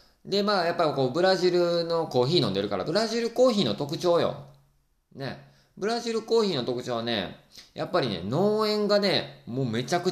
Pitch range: 100-155 Hz